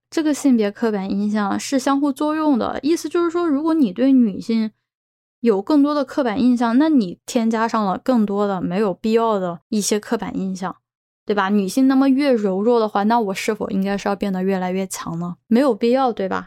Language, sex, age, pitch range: Chinese, female, 10-29, 200-255 Hz